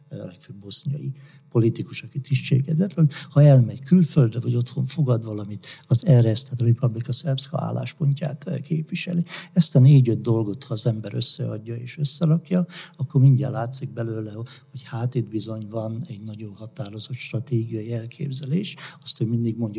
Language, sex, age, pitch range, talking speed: Hungarian, male, 60-79, 120-150 Hz, 150 wpm